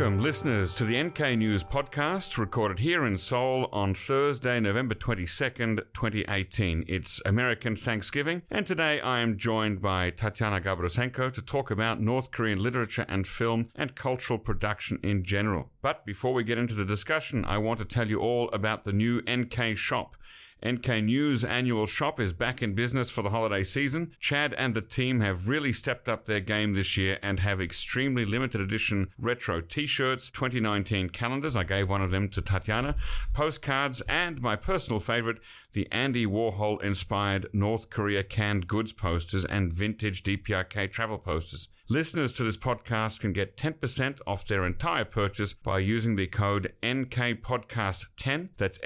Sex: male